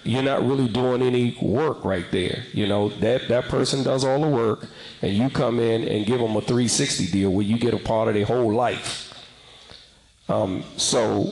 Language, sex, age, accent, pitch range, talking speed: English, male, 50-69, American, 120-150 Hz, 200 wpm